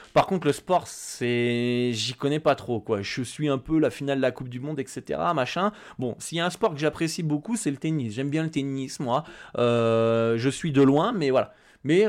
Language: French